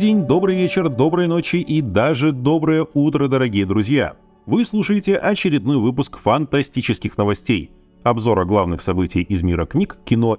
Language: Russian